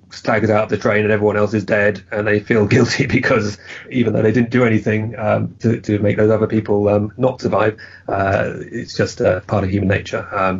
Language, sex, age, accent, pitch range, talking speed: English, male, 30-49, British, 95-110 Hz, 225 wpm